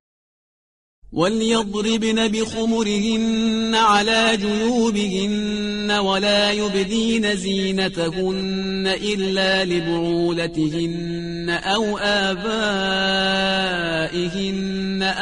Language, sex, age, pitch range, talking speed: Persian, male, 30-49, 175-210 Hz, 45 wpm